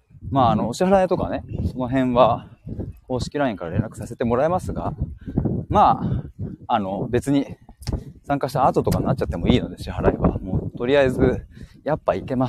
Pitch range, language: 95-135 Hz, Japanese